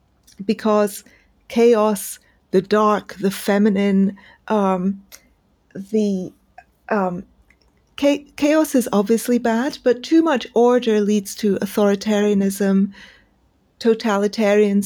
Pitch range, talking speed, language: 205-250 Hz, 85 wpm, English